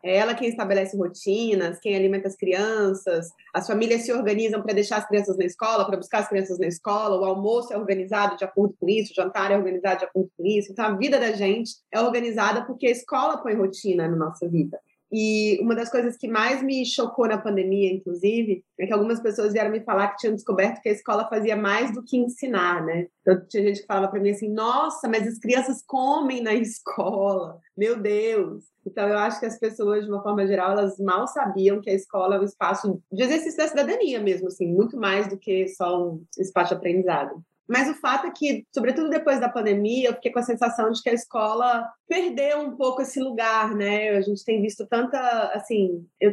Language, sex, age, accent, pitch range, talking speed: Portuguese, female, 20-39, Brazilian, 195-235 Hz, 215 wpm